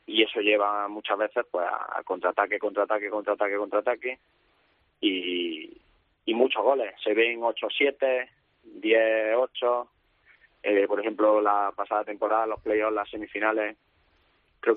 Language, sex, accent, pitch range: Spanish, male, Spanish, 105-135 Hz